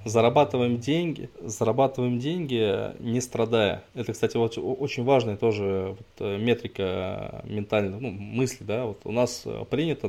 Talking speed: 125 wpm